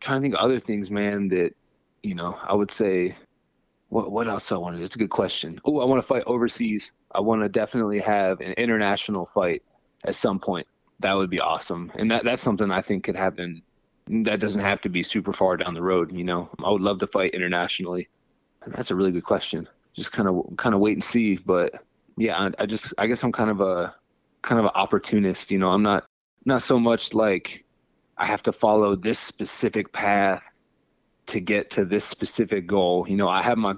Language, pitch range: English, 95-110 Hz